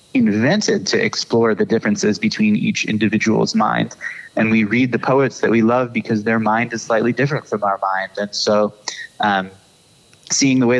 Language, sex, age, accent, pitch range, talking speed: English, male, 20-39, American, 105-120 Hz, 180 wpm